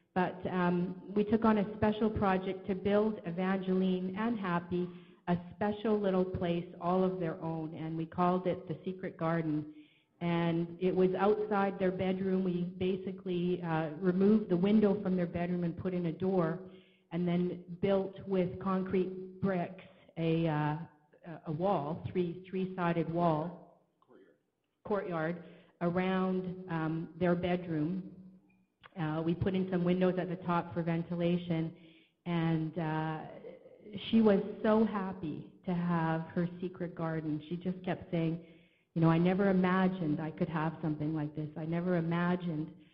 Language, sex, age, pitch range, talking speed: English, female, 50-69, 170-190 Hz, 150 wpm